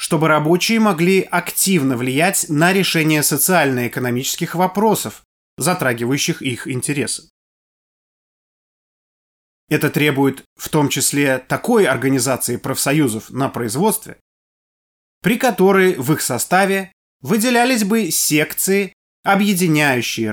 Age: 20-39